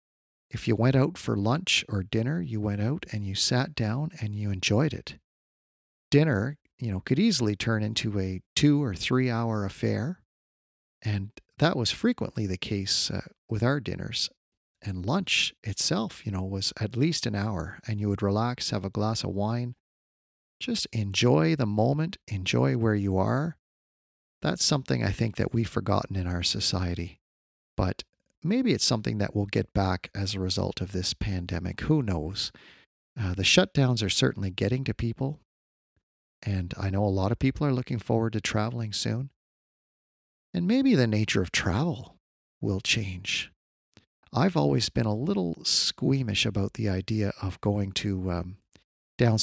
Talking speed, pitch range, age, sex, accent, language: 170 wpm, 95-120 Hz, 40-59, male, American, English